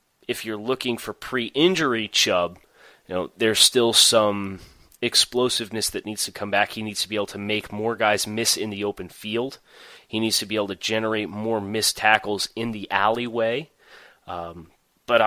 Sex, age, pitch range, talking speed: male, 30-49, 100-115 Hz, 180 wpm